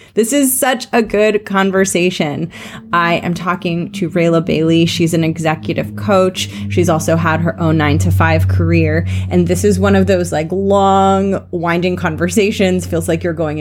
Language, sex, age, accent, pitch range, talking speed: English, female, 30-49, American, 165-200 Hz, 170 wpm